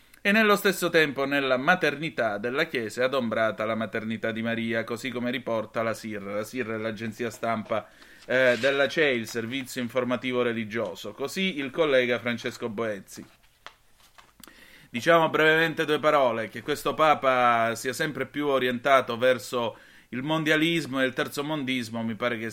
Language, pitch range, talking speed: Italian, 120-150 Hz, 150 wpm